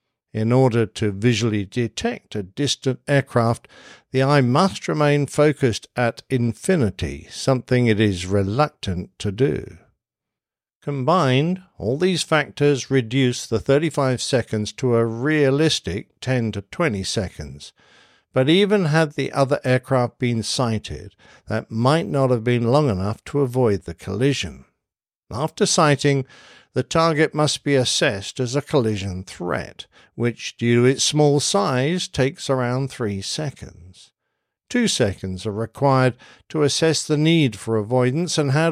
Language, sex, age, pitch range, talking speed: English, male, 60-79, 110-145 Hz, 135 wpm